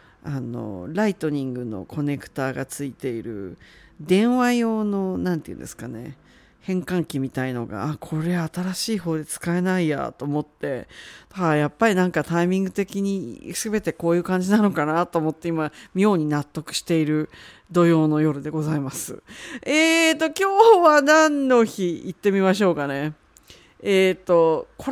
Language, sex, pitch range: Japanese, female, 155-215 Hz